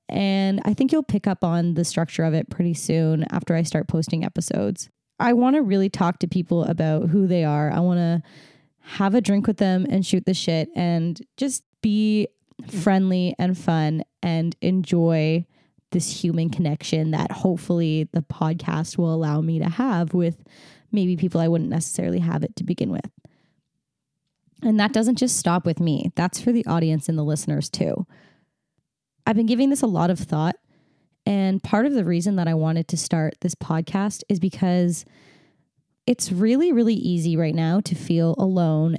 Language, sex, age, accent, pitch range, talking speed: English, female, 10-29, American, 165-195 Hz, 180 wpm